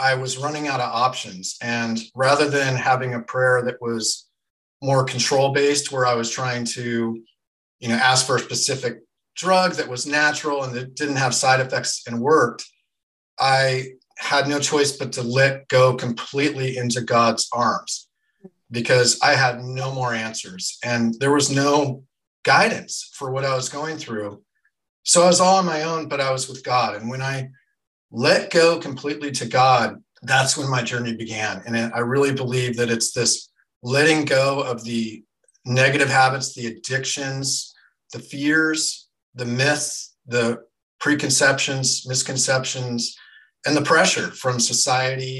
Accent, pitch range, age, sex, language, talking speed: American, 120-140 Hz, 40-59, male, English, 160 wpm